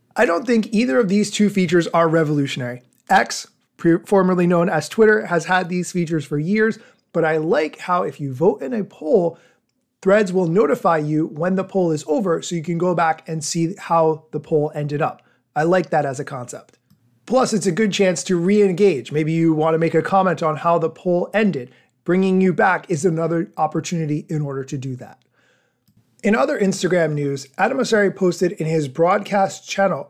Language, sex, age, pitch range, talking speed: English, male, 30-49, 155-195 Hz, 195 wpm